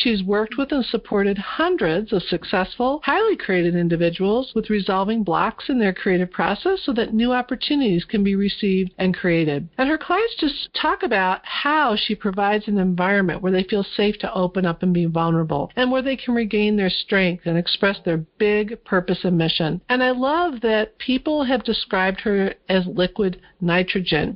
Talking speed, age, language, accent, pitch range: 180 wpm, 50-69, English, American, 185-240 Hz